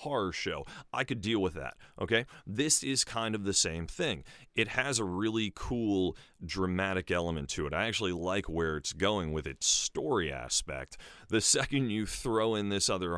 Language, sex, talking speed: English, male, 185 wpm